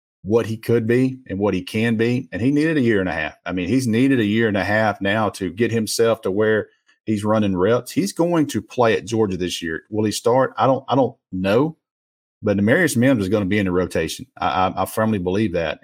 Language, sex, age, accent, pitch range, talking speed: English, male, 40-59, American, 95-115 Hz, 255 wpm